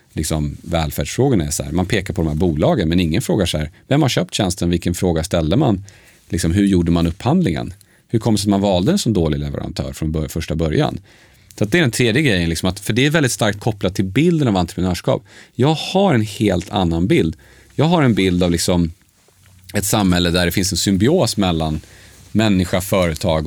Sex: male